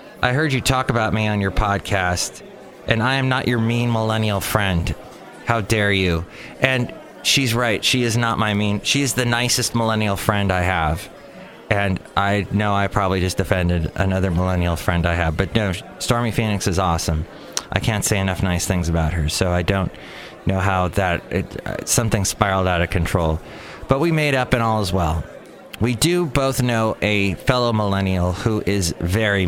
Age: 30-49